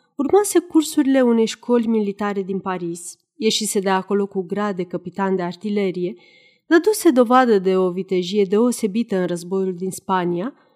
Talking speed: 145 wpm